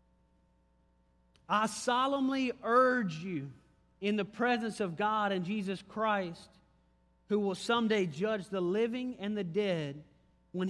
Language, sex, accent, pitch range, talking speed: English, male, American, 180-235 Hz, 125 wpm